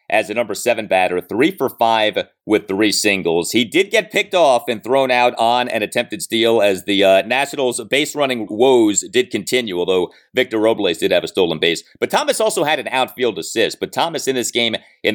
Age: 30-49